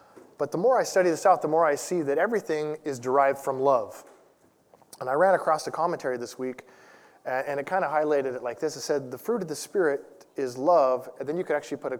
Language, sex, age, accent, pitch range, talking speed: English, male, 20-39, American, 135-170 Hz, 245 wpm